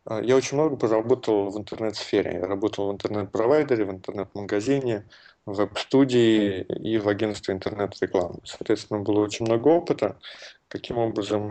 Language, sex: Russian, male